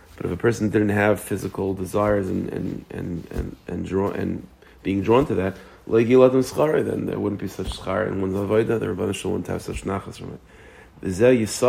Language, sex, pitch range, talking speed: English, male, 95-110 Hz, 195 wpm